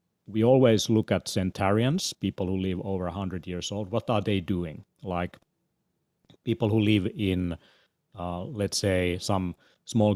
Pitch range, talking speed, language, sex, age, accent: 90-110 Hz, 155 wpm, English, male, 30-49, Finnish